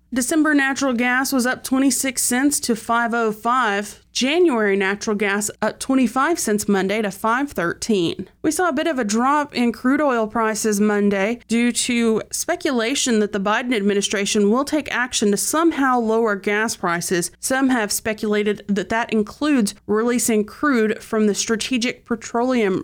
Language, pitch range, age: English, 210-255 Hz, 30-49